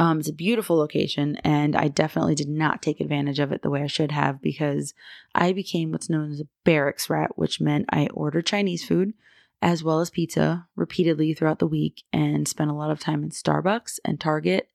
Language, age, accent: English, 20-39, American